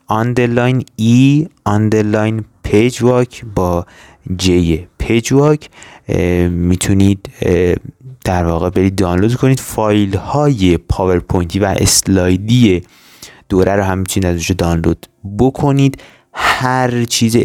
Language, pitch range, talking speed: Persian, 90-120 Hz, 95 wpm